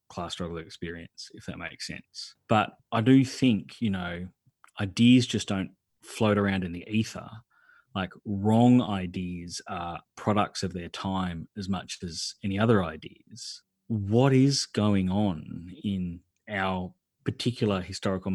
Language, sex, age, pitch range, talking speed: English, male, 30-49, 90-110 Hz, 140 wpm